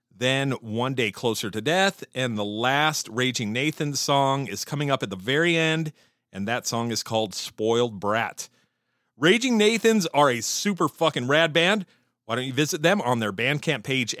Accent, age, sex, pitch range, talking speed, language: American, 40-59, male, 115-155 Hz, 180 wpm, English